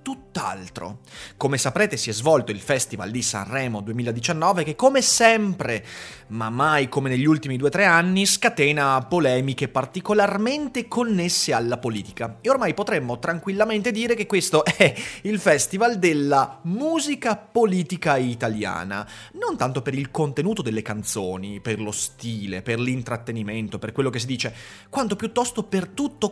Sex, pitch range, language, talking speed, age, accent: male, 115-190 Hz, Italian, 145 wpm, 30-49, native